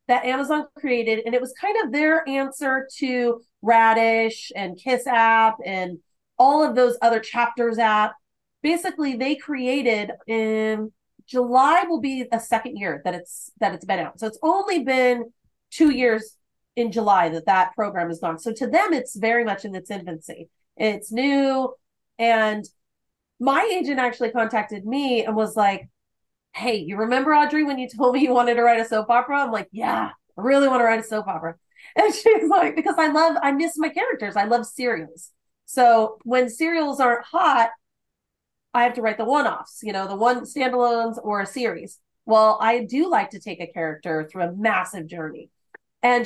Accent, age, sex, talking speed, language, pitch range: American, 30-49, female, 185 wpm, English, 220-270 Hz